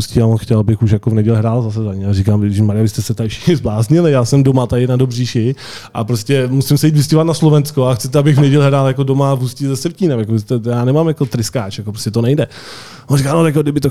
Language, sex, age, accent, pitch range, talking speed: Czech, male, 20-39, native, 110-125 Hz, 255 wpm